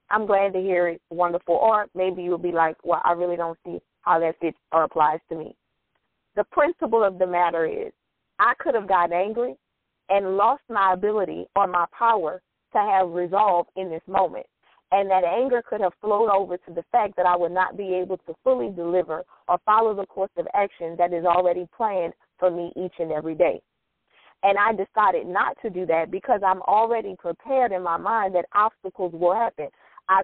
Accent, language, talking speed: American, English, 200 wpm